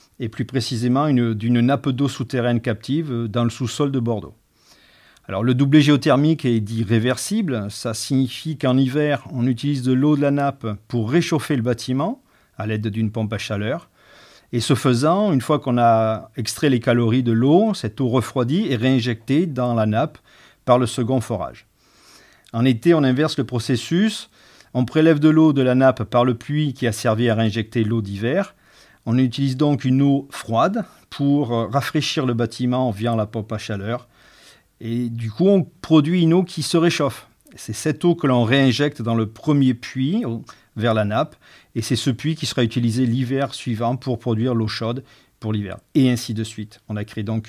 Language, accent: French, French